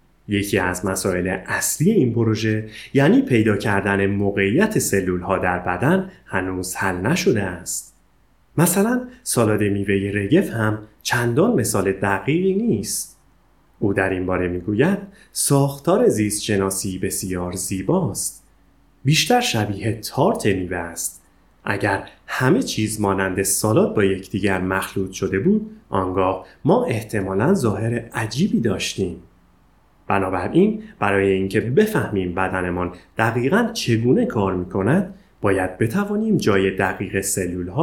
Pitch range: 95-140 Hz